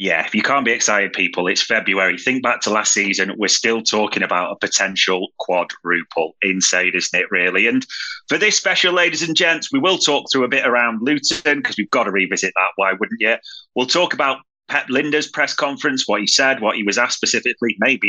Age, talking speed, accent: 30-49, 215 wpm, British